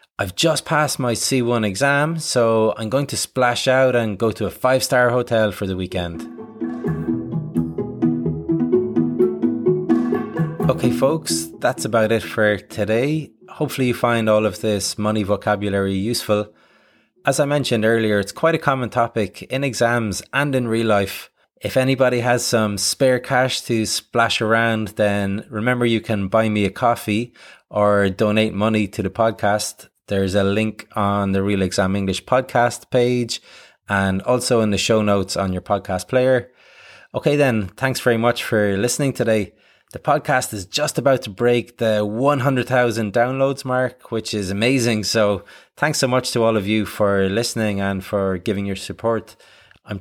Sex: male